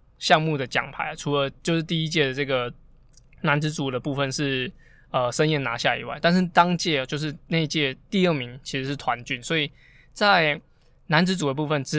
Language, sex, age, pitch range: Chinese, male, 20-39, 130-155 Hz